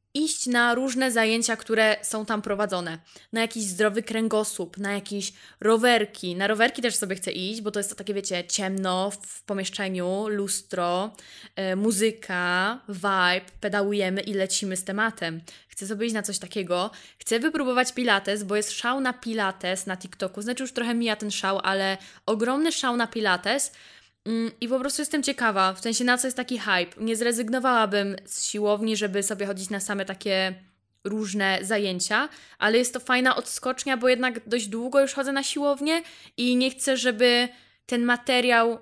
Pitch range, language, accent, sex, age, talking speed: 195-240 Hz, Polish, native, female, 10-29, 165 wpm